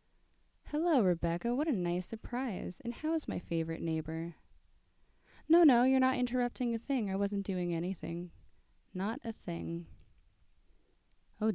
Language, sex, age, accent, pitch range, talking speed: English, female, 20-39, American, 165-215 Hz, 135 wpm